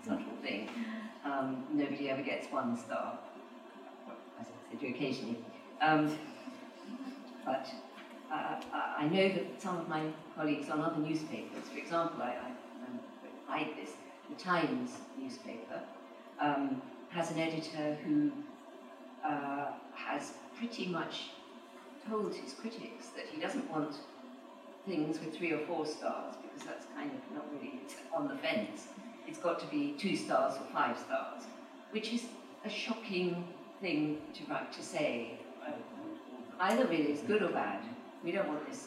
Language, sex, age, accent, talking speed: Russian, female, 40-59, British, 145 wpm